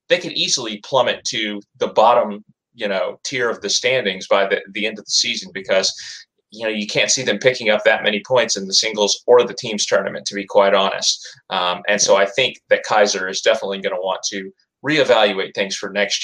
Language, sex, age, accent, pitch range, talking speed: English, male, 30-49, American, 100-150 Hz, 220 wpm